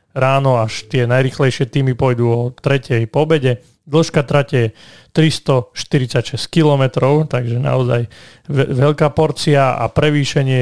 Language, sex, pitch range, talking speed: Slovak, male, 120-145 Hz, 125 wpm